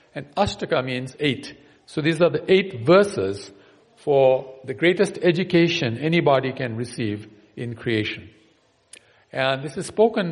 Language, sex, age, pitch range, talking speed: English, male, 50-69, 125-170 Hz, 135 wpm